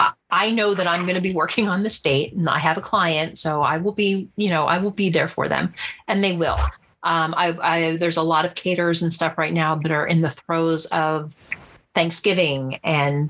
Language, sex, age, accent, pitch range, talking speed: English, female, 40-59, American, 155-185 Hz, 230 wpm